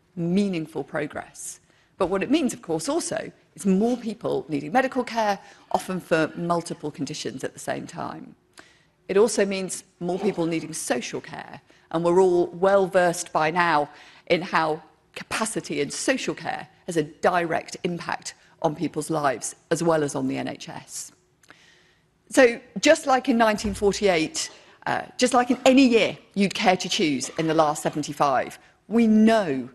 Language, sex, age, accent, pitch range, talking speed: English, female, 40-59, British, 165-225 Hz, 155 wpm